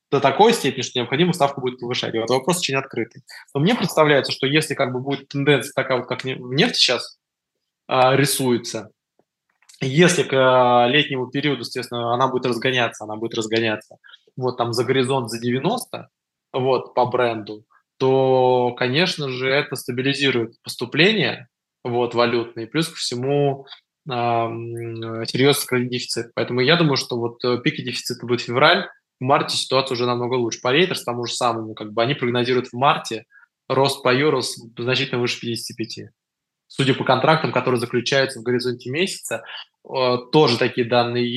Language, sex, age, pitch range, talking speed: Russian, male, 20-39, 120-140 Hz, 155 wpm